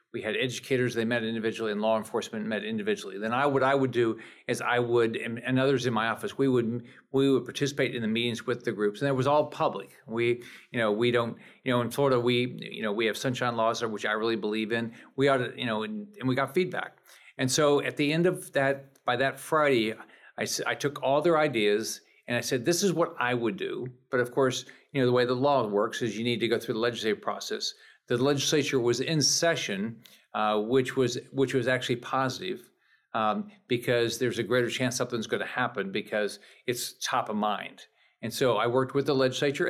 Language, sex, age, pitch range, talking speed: English, male, 50-69, 120-140 Hz, 230 wpm